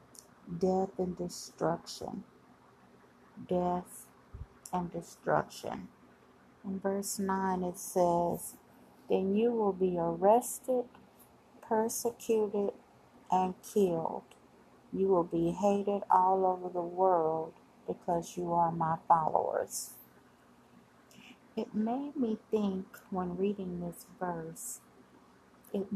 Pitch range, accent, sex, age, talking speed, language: 175-210 Hz, American, female, 50-69, 95 wpm, English